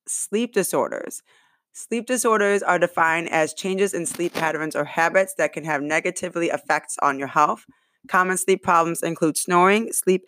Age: 20-39